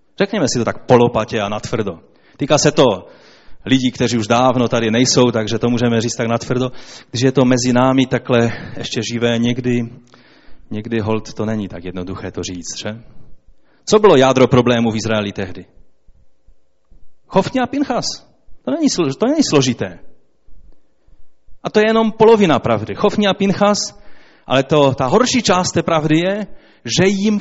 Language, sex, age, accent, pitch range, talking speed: Czech, male, 30-49, native, 110-155 Hz, 160 wpm